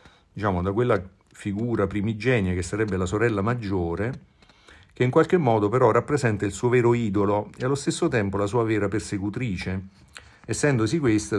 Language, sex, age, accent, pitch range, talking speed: Italian, male, 50-69, native, 95-120 Hz, 160 wpm